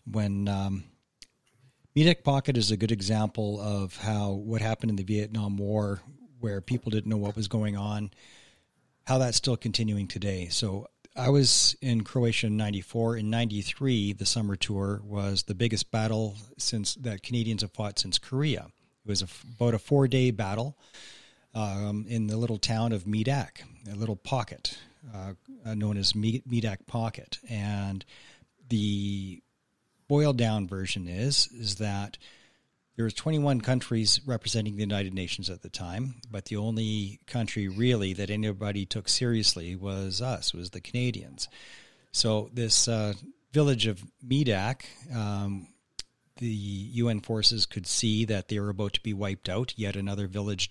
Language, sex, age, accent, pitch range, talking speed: English, male, 40-59, American, 100-120 Hz, 155 wpm